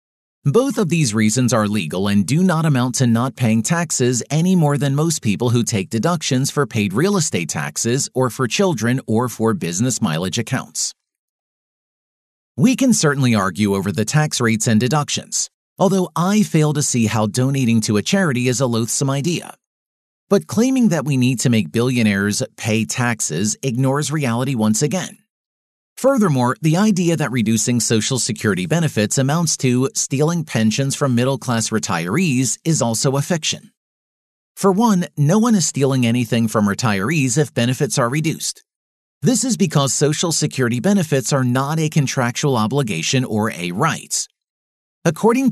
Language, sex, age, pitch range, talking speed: English, male, 40-59, 115-165 Hz, 160 wpm